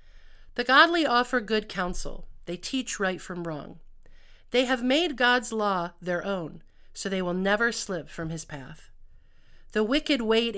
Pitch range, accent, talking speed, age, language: 170-230 Hz, American, 160 wpm, 50-69, English